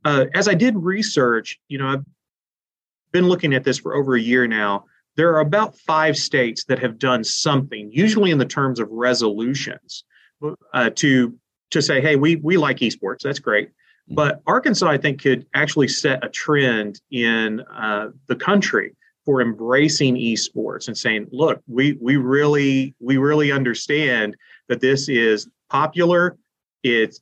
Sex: male